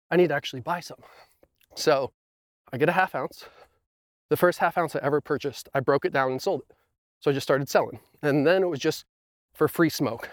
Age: 20-39